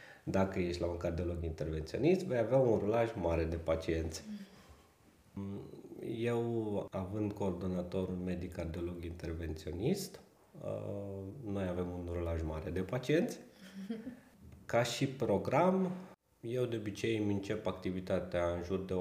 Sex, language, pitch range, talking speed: male, Romanian, 90-115 Hz, 120 wpm